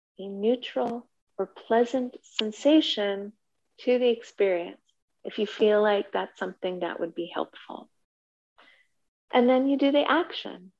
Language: English